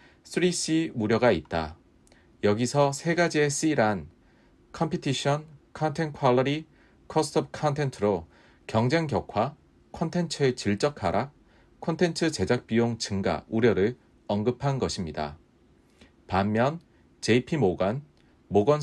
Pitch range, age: 95-145 Hz, 40-59